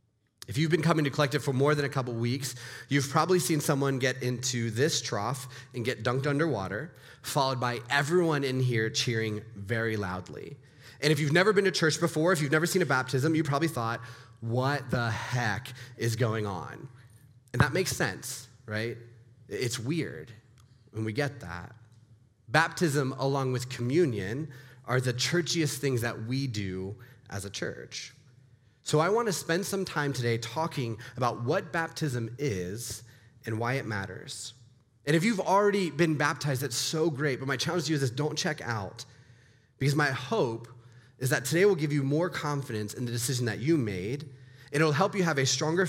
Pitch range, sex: 120-150 Hz, male